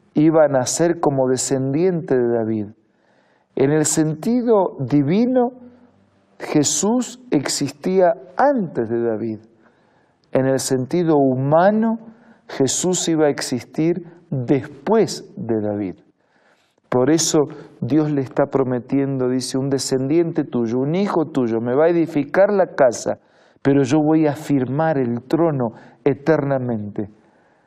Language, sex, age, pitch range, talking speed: Spanish, male, 50-69, 130-165 Hz, 115 wpm